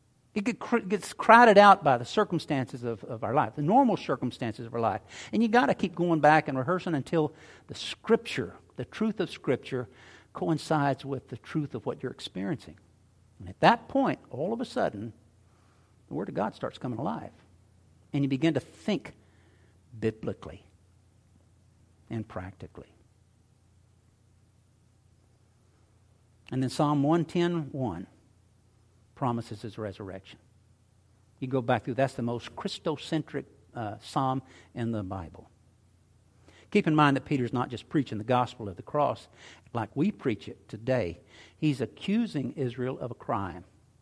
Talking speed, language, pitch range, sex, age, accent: 150 wpm, English, 105-145 Hz, male, 60-79, American